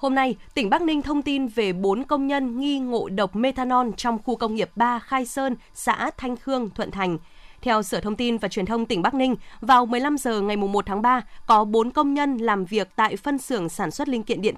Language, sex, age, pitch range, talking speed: Vietnamese, female, 20-39, 205-260 Hz, 240 wpm